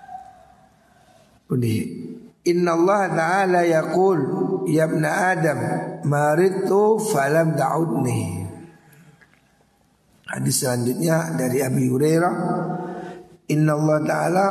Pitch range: 145-180 Hz